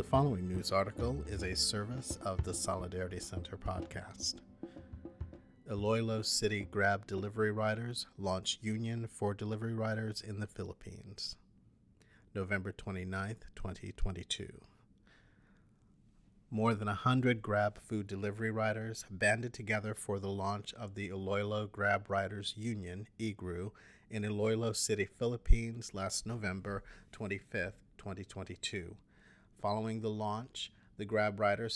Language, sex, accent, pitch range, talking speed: English, male, American, 100-110 Hz, 115 wpm